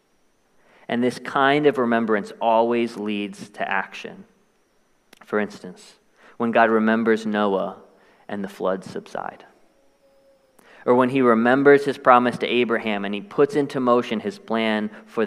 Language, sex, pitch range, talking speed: English, male, 105-125 Hz, 140 wpm